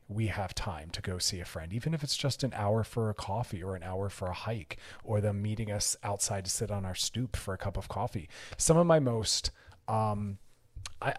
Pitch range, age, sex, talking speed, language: 100-120 Hz, 30-49, male, 235 wpm, English